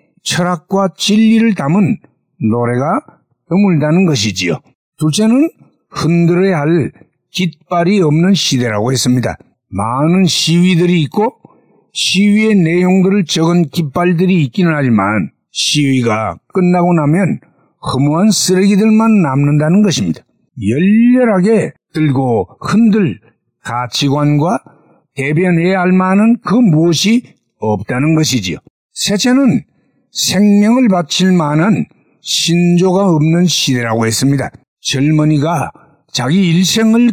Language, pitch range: Korean, 145-195 Hz